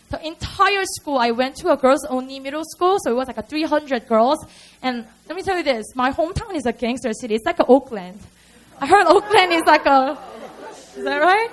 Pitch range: 250-360 Hz